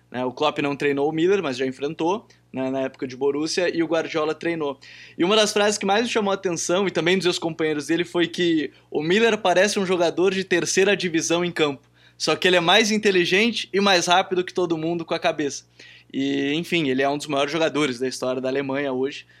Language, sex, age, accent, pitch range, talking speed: Portuguese, male, 20-39, Brazilian, 140-180 Hz, 230 wpm